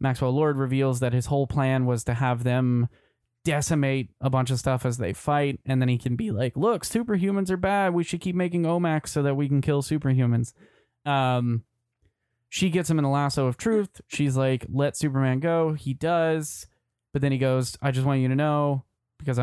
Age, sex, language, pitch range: 20-39, male, English, 120-145 Hz